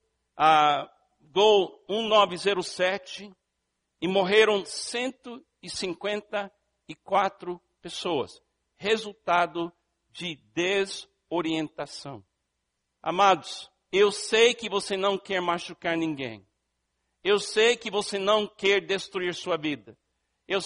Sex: male